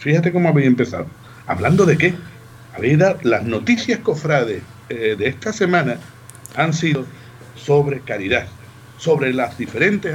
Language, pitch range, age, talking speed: Spanish, 110-150 Hz, 50-69, 130 wpm